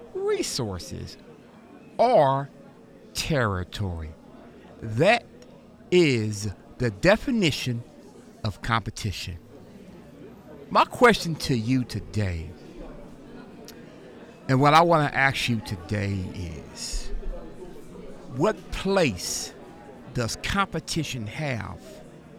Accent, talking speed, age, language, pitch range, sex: American, 75 wpm, 50-69, English, 105-175 Hz, male